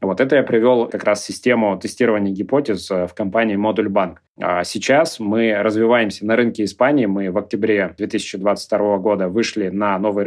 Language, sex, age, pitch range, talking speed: Russian, male, 20-39, 100-120 Hz, 150 wpm